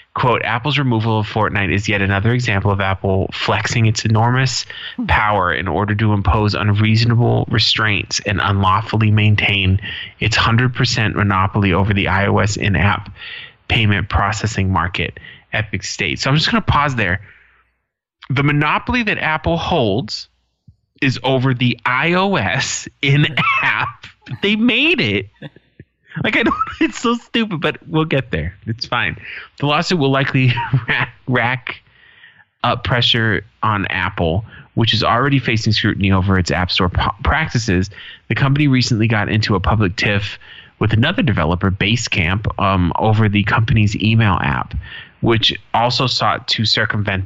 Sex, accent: male, American